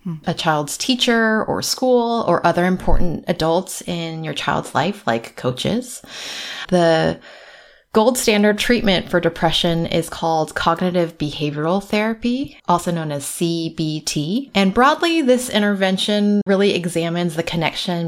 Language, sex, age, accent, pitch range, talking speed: English, female, 20-39, American, 165-210 Hz, 125 wpm